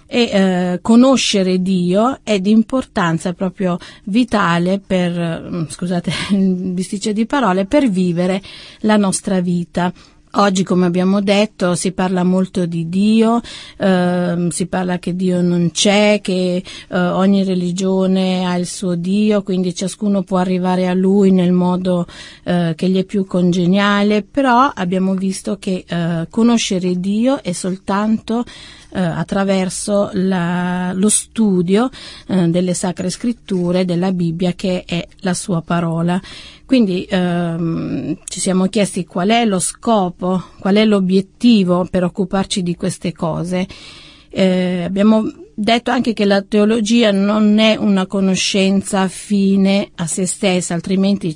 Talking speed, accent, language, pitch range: 135 wpm, native, Italian, 180-205 Hz